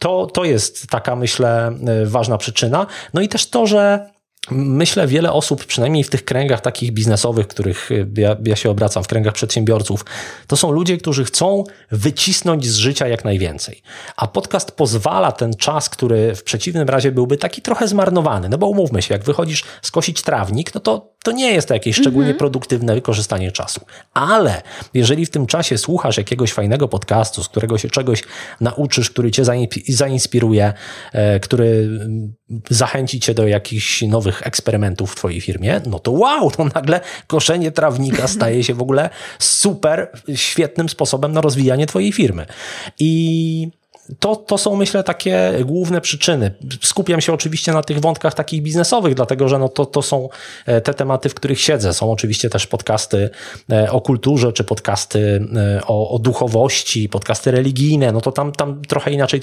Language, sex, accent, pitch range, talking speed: Polish, male, native, 110-155 Hz, 165 wpm